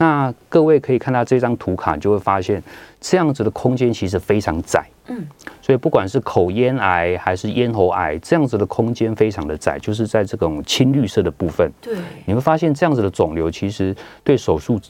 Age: 30-49